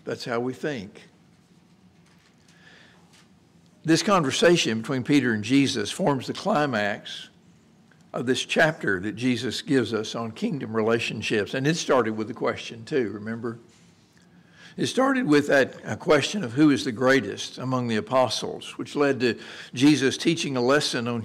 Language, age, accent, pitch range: English, 60-79, American, 115-145 Hz